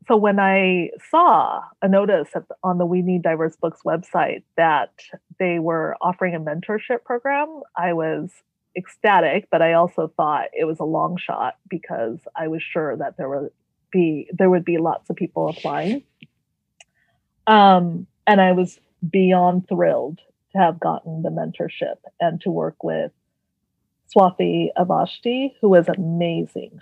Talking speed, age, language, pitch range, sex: 155 wpm, 30-49, English, 170-200 Hz, female